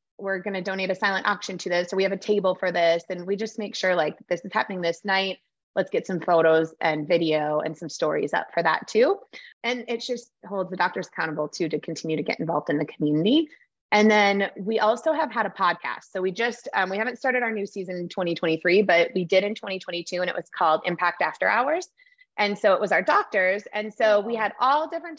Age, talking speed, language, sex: 20-39, 240 wpm, English, female